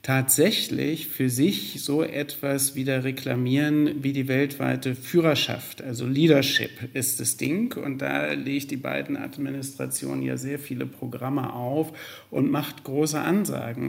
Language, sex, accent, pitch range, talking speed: German, male, German, 130-150 Hz, 135 wpm